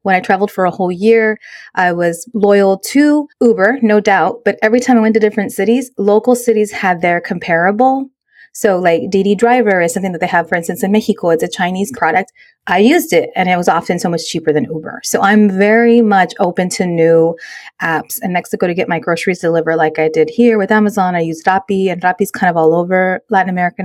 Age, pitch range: 30-49, 180-225 Hz